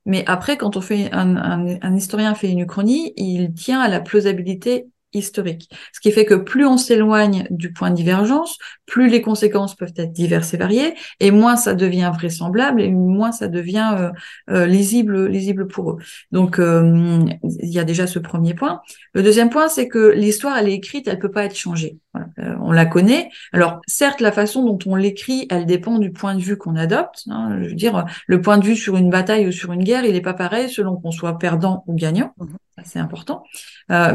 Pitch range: 175-220 Hz